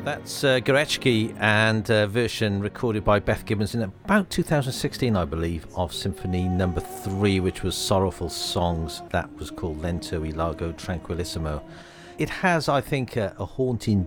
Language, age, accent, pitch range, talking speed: English, 50-69, British, 85-110 Hz, 160 wpm